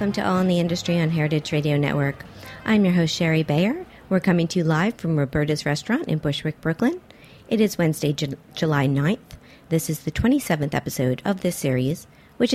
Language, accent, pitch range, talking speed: English, American, 155-210 Hz, 190 wpm